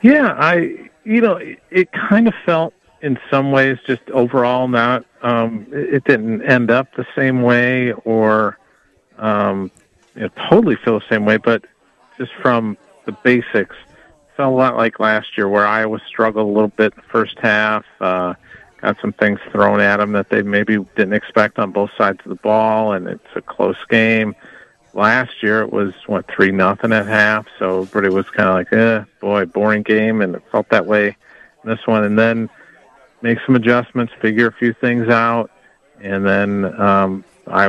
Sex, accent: male, American